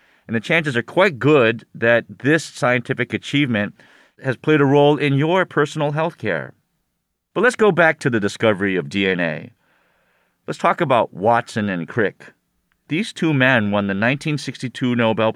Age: 40-59